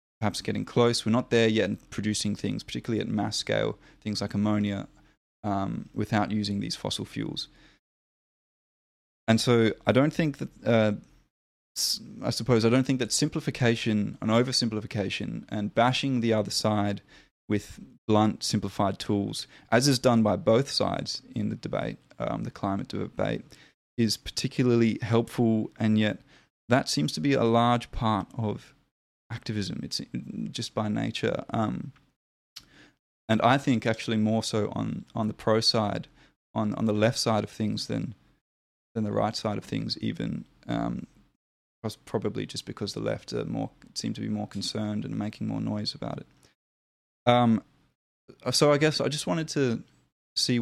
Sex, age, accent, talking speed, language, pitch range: male, 20-39, Australian, 160 wpm, English, 105-120 Hz